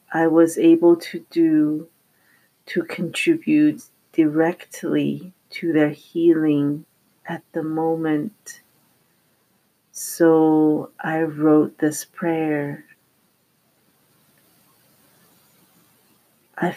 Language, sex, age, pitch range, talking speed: English, female, 40-59, 155-170 Hz, 70 wpm